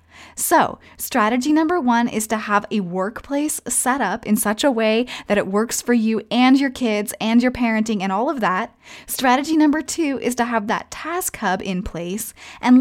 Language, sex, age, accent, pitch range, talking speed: English, female, 20-39, American, 205-280 Hz, 195 wpm